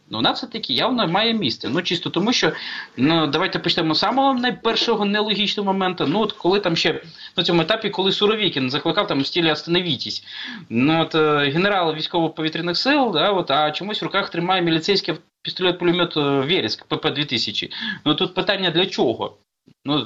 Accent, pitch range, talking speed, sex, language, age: native, 150-185 Hz, 165 wpm, male, Ukrainian, 20-39